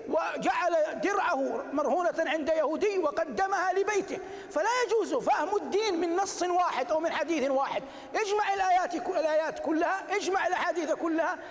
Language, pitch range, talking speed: Arabic, 300-375 Hz, 125 wpm